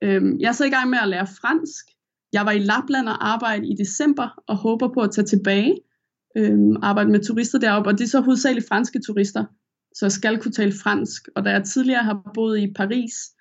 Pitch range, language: 210-260 Hz, Danish